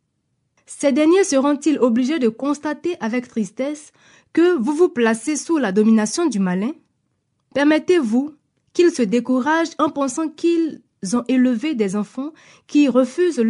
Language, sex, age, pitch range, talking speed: French, female, 20-39, 225-305 Hz, 135 wpm